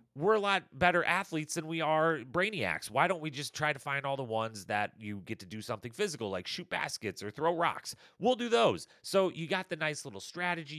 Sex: male